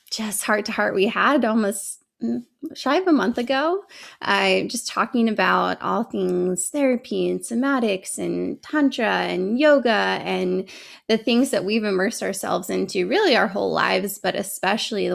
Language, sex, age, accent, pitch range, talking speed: English, female, 20-39, American, 180-230 Hz, 155 wpm